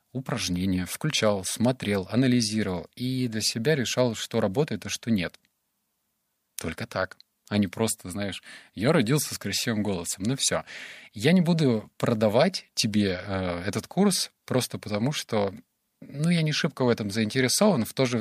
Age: 20-39